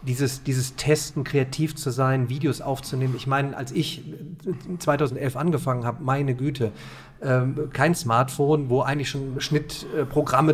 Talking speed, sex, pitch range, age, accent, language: 135 wpm, male, 140-165 Hz, 40-59, German, German